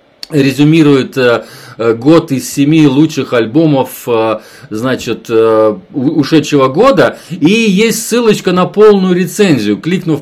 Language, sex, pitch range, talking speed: Russian, male, 130-165 Hz, 95 wpm